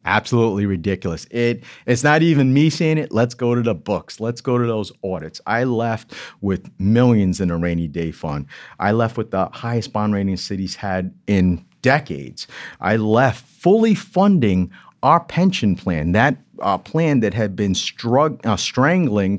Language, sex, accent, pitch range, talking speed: English, male, American, 100-135 Hz, 165 wpm